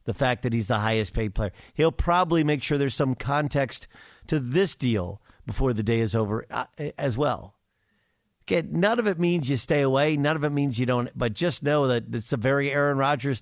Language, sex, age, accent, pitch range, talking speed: English, male, 50-69, American, 110-140 Hz, 225 wpm